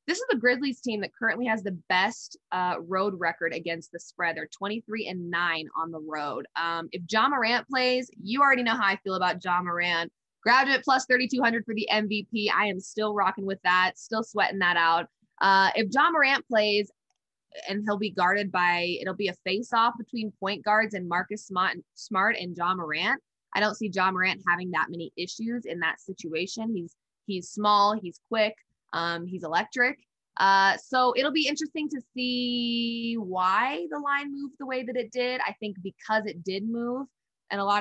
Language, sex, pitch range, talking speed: English, female, 180-225 Hz, 190 wpm